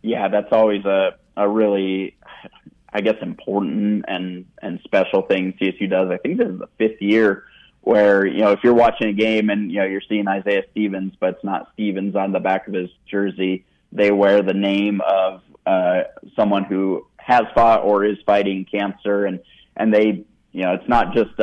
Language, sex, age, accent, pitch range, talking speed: English, male, 20-39, American, 95-105 Hz, 195 wpm